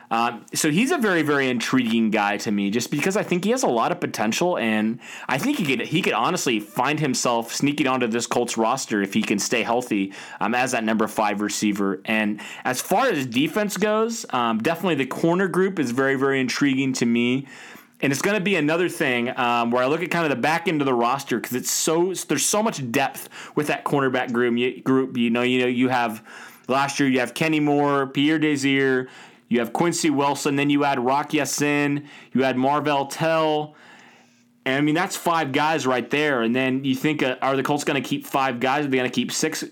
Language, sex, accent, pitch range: English, male, American, 115-150 Hz